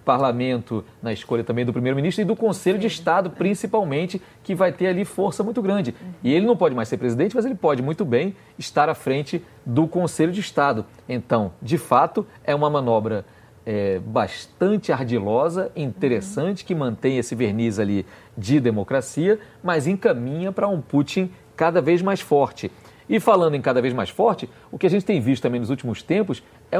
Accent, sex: Brazilian, male